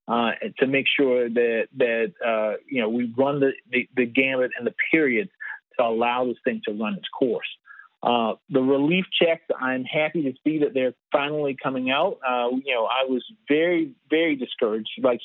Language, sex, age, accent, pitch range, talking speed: English, male, 40-59, American, 130-170 Hz, 190 wpm